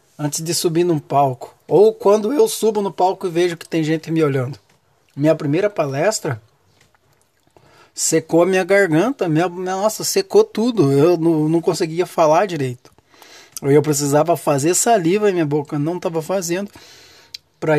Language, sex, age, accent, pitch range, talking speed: Portuguese, male, 20-39, Brazilian, 135-180 Hz, 155 wpm